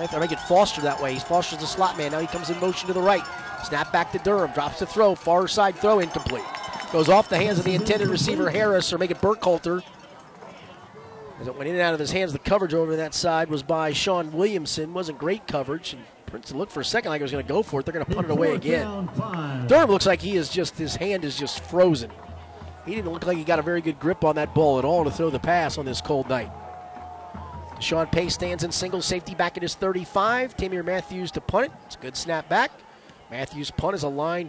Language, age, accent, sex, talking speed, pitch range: English, 30-49, American, male, 245 wpm, 155-195 Hz